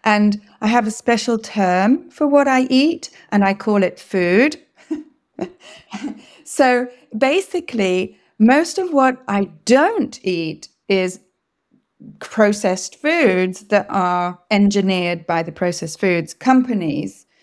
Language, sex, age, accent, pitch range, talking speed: English, female, 30-49, British, 195-250 Hz, 115 wpm